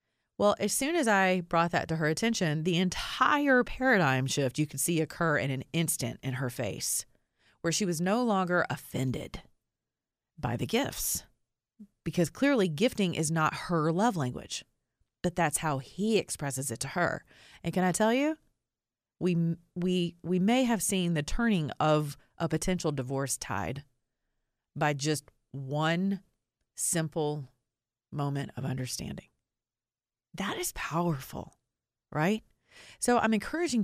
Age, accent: 30-49, American